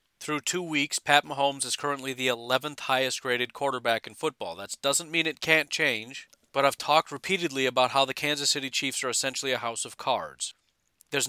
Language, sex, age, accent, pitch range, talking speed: English, male, 40-59, American, 120-145 Hz, 190 wpm